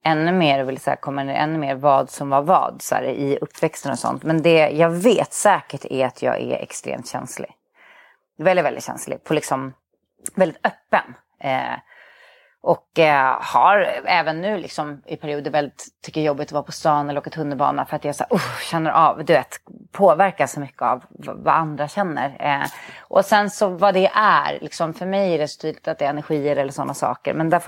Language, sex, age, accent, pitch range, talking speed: English, female, 30-49, Swedish, 145-185 Hz, 210 wpm